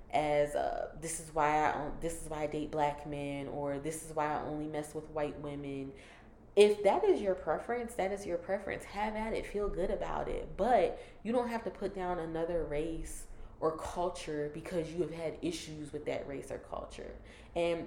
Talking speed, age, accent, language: 205 wpm, 20-39, American, English